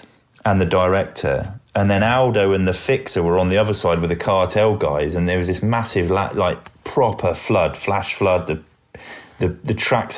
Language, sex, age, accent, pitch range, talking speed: English, male, 20-39, British, 90-105 Hz, 195 wpm